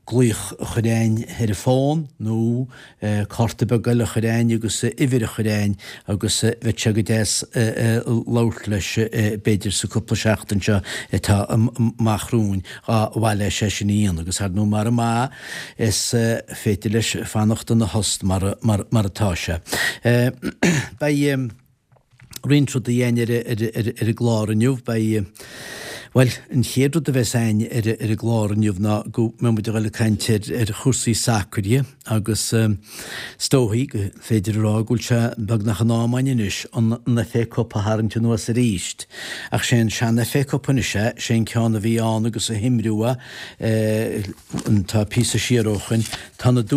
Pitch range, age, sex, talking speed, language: 110-120 Hz, 60-79, male, 95 wpm, English